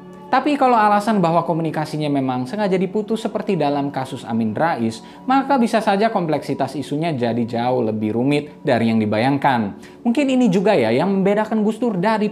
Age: 20-39